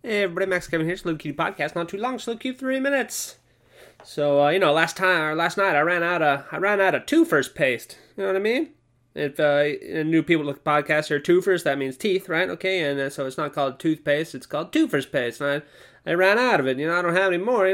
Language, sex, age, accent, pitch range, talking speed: English, male, 20-39, American, 135-170 Hz, 265 wpm